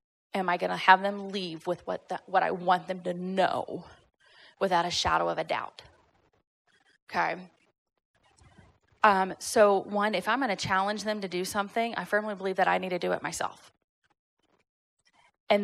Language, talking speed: English, 170 wpm